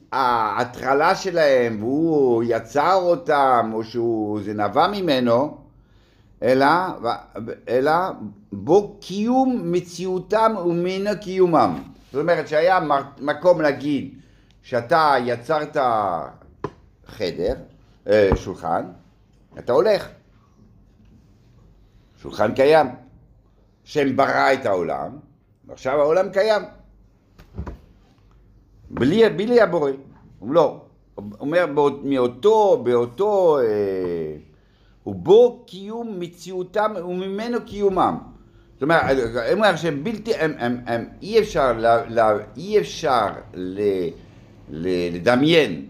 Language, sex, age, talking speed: Hebrew, male, 60-79, 80 wpm